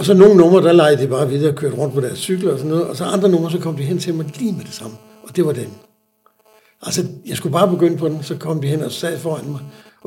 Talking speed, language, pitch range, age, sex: 305 wpm, Danish, 130-165 Hz, 60-79, male